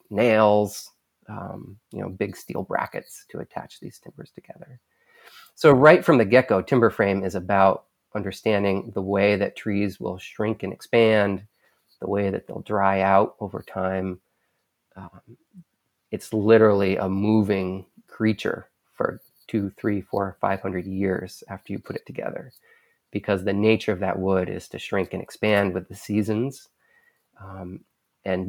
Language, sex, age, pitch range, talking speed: English, male, 30-49, 95-115 Hz, 150 wpm